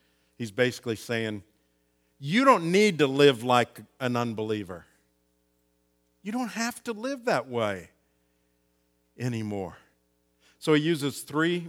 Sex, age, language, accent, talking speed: male, 50-69, English, American, 120 wpm